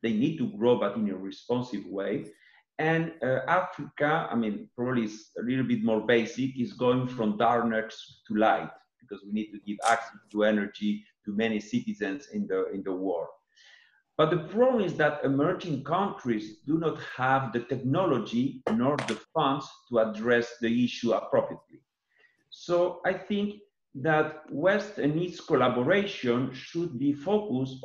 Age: 50-69